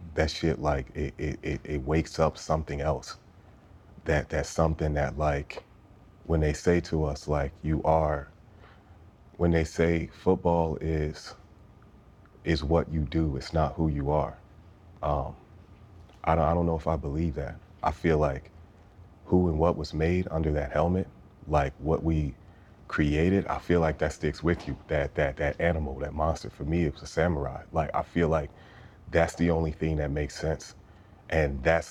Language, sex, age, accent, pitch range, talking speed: English, male, 30-49, American, 75-90 Hz, 175 wpm